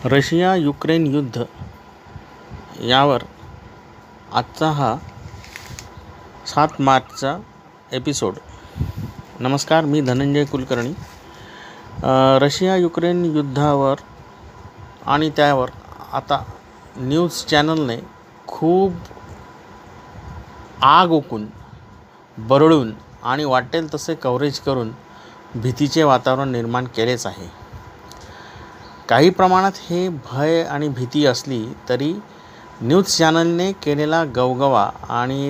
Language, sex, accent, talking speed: Marathi, male, native, 80 wpm